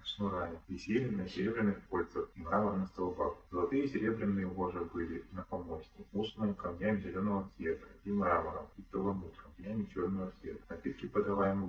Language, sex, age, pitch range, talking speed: Russian, male, 30-49, 90-105 Hz, 140 wpm